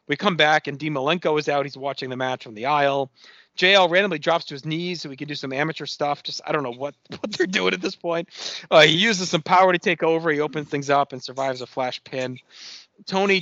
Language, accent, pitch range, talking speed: English, American, 130-175 Hz, 255 wpm